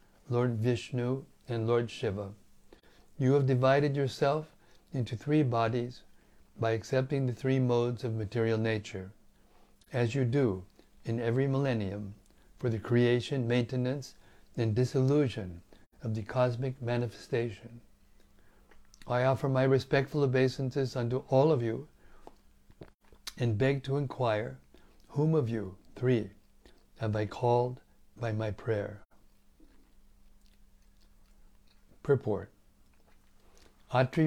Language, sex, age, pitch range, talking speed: English, male, 60-79, 100-135 Hz, 105 wpm